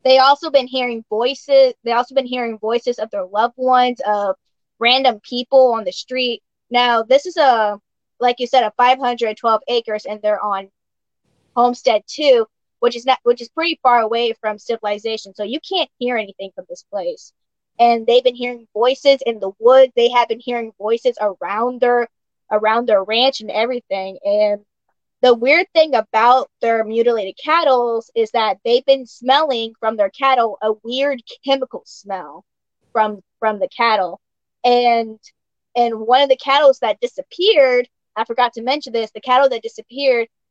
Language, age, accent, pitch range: English, 20-39, American, 225-265 Hz